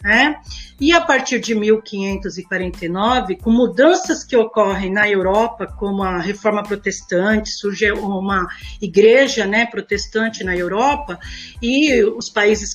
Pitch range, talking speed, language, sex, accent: 200-270 Hz, 120 wpm, Portuguese, female, Brazilian